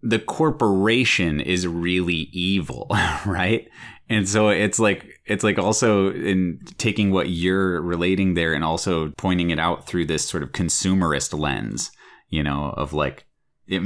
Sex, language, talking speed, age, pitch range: male, English, 150 wpm, 30-49, 80-100 Hz